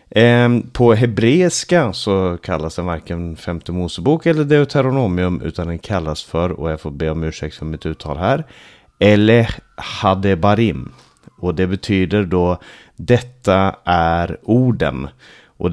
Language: Swedish